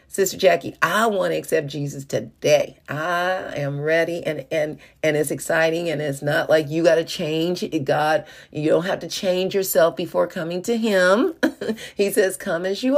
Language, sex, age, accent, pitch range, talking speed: English, female, 40-59, American, 140-170 Hz, 185 wpm